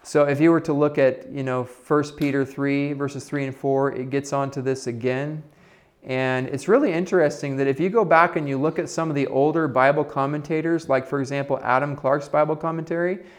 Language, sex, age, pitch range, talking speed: English, male, 30-49, 130-155 Hz, 215 wpm